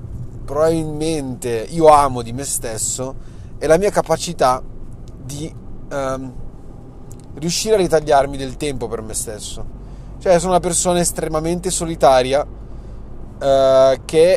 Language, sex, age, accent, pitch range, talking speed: Italian, male, 30-49, native, 115-140 Hz, 115 wpm